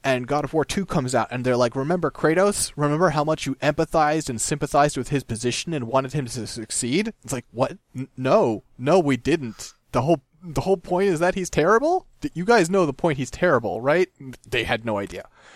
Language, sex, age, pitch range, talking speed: English, male, 30-49, 110-145 Hz, 220 wpm